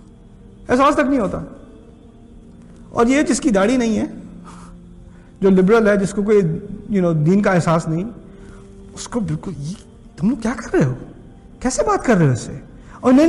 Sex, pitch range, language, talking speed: male, 135-170 Hz, Urdu, 180 wpm